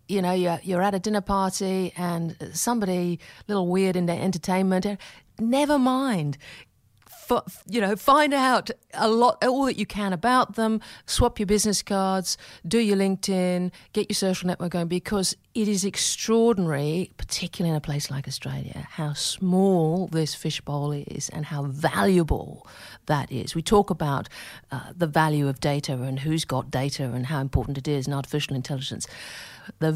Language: English